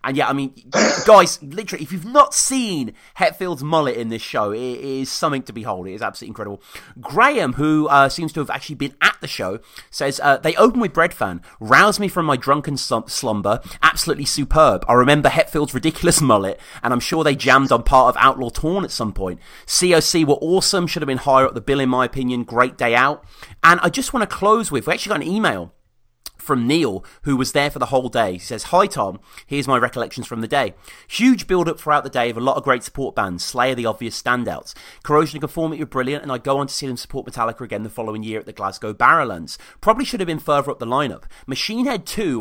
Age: 30-49